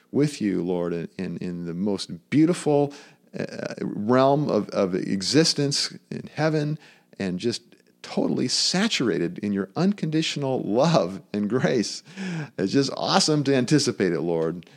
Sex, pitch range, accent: male, 90-145 Hz, American